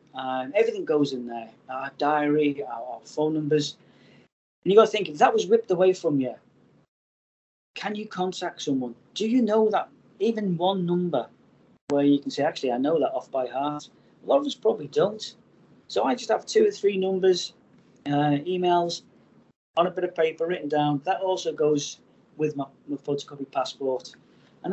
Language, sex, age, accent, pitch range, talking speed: English, male, 30-49, British, 130-180 Hz, 185 wpm